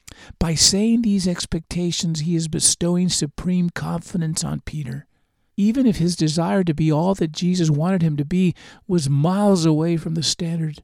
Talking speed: 165 wpm